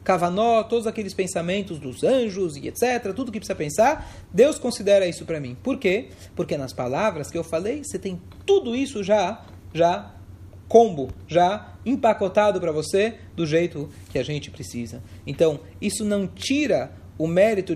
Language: Portuguese